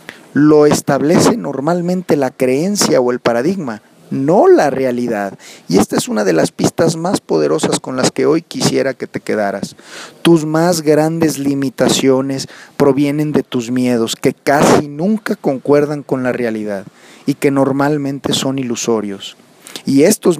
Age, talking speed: 40-59, 145 wpm